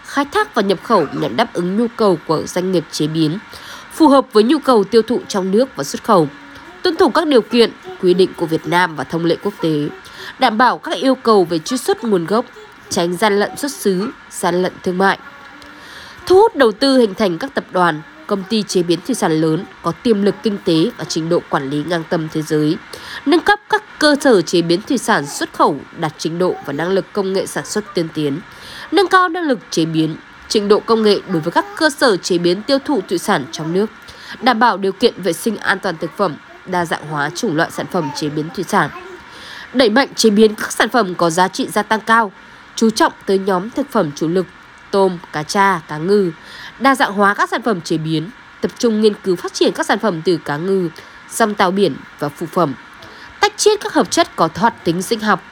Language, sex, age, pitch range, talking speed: Vietnamese, female, 20-39, 170-235 Hz, 240 wpm